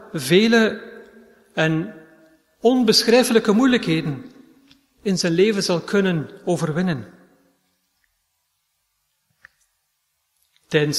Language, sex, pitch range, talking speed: Dutch, male, 160-215 Hz, 60 wpm